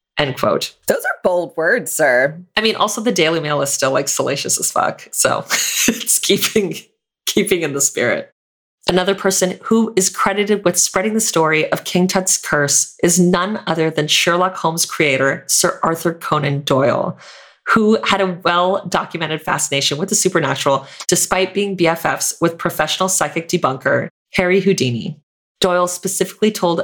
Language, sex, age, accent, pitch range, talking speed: English, female, 30-49, American, 150-190 Hz, 155 wpm